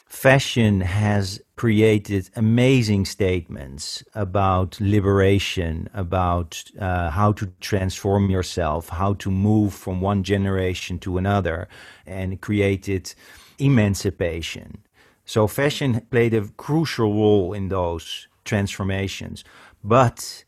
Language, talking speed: English, 100 wpm